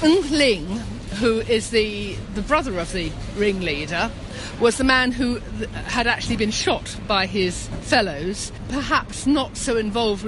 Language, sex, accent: English, female, British